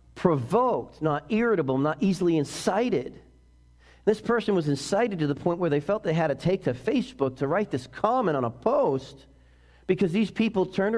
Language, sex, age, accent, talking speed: English, male, 40-59, American, 180 wpm